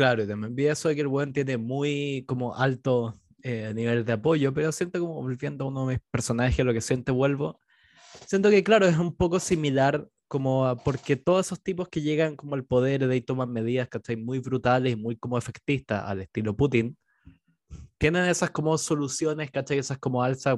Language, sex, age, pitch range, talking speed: Spanish, male, 20-39, 120-155 Hz, 205 wpm